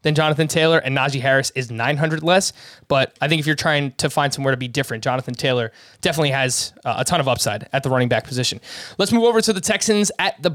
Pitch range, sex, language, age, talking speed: 140-170 Hz, male, English, 20-39, 240 wpm